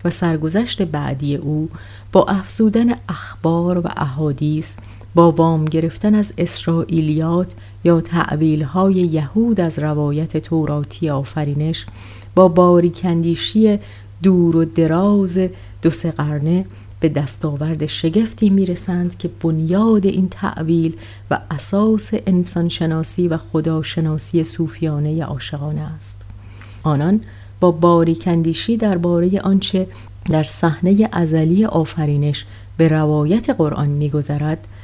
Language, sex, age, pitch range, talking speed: Persian, female, 30-49, 145-180 Hz, 100 wpm